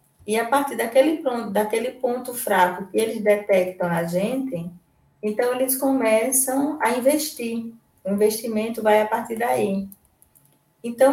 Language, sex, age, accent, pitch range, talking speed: Portuguese, female, 20-39, Brazilian, 195-265 Hz, 135 wpm